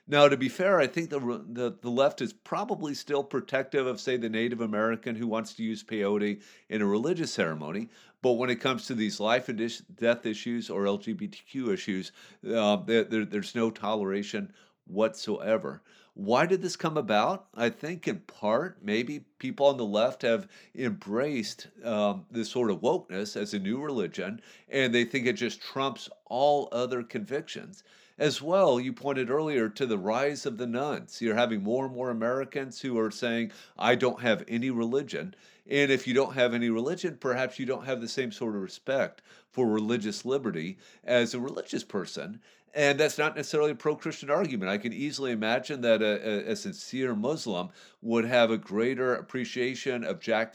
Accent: American